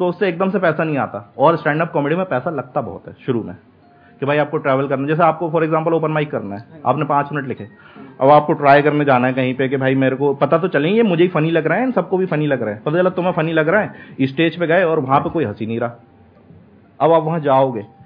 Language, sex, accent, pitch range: Hindi, male, native, 130-165 Hz